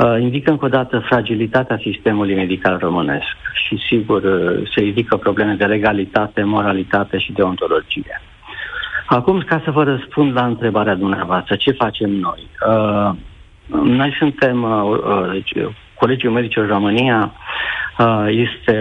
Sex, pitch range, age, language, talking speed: male, 105-130 Hz, 50-69, Romanian, 130 wpm